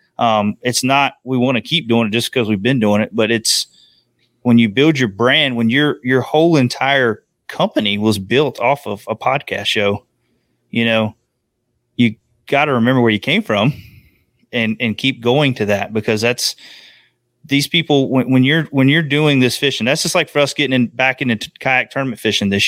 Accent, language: American, English